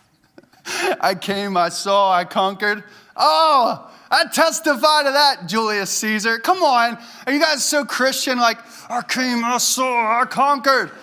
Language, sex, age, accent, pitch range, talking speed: English, male, 20-39, American, 185-255 Hz, 145 wpm